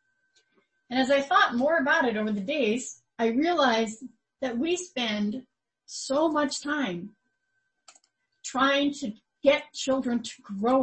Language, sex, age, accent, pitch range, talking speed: English, female, 40-59, American, 215-285 Hz, 135 wpm